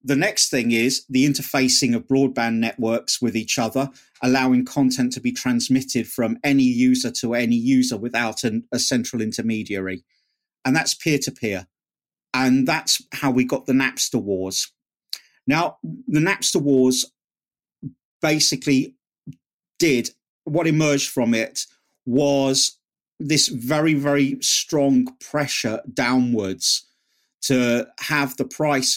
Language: English